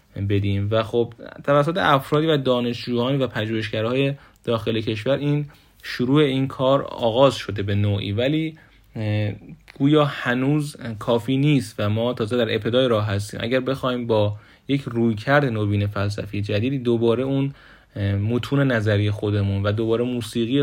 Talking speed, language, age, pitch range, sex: 135 wpm, Persian, 30-49, 105-130 Hz, male